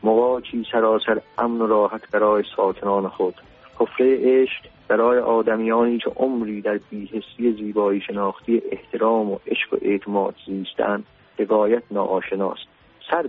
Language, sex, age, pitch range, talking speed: Persian, male, 40-59, 100-115 Hz, 120 wpm